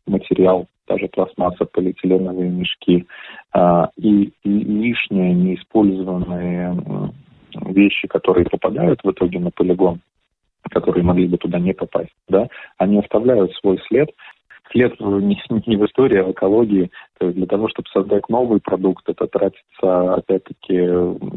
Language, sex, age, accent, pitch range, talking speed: Russian, male, 30-49, native, 90-100 Hz, 110 wpm